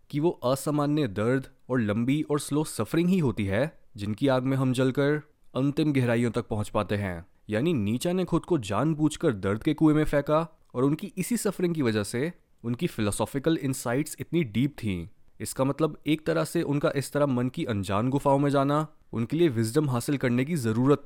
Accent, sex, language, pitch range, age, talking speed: native, male, Hindi, 110-150 Hz, 20-39, 195 wpm